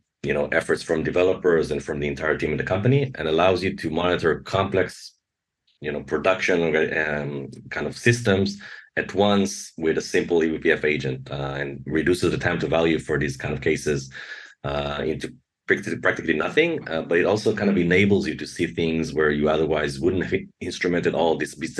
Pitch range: 75-90 Hz